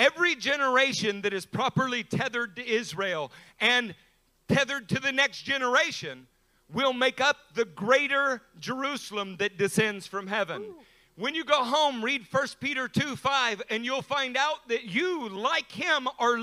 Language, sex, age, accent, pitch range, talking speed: English, male, 50-69, American, 210-270 Hz, 155 wpm